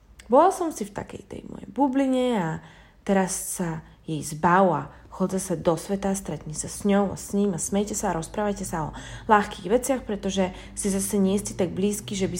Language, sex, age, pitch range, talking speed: Slovak, female, 20-39, 185-235 Hz, 210 wpm